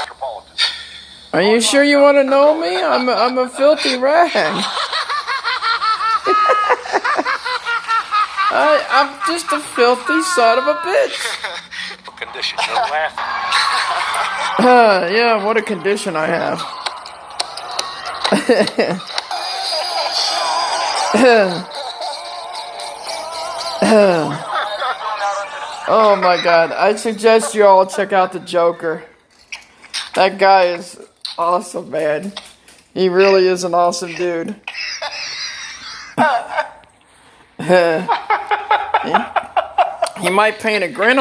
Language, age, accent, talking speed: English, 50-69, American, 85 wpm